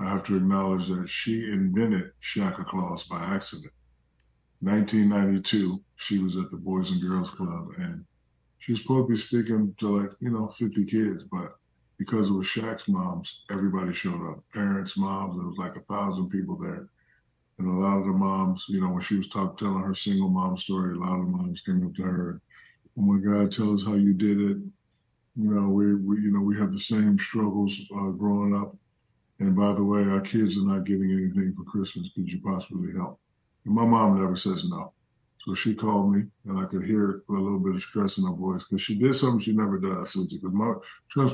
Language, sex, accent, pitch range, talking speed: English, male, American, 95-115 Hz, 210 wpm